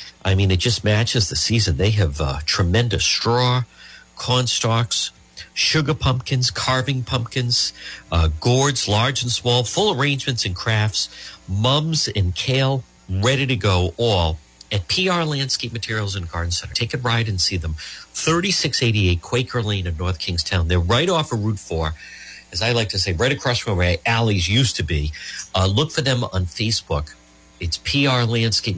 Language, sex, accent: English, male, American